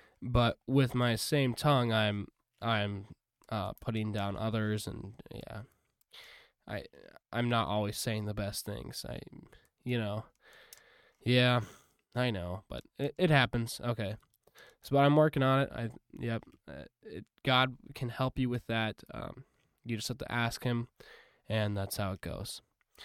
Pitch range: 110-130 Hz